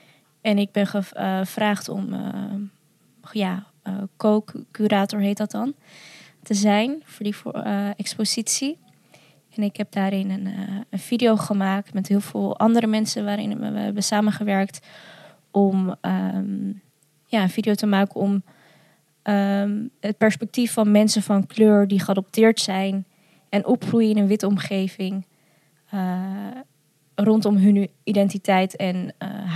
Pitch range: 190-210 Hz